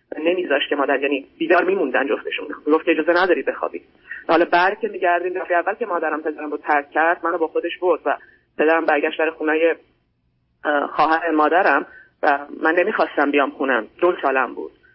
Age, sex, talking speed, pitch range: 30-49, female, 160 wpm, 155-205 Hz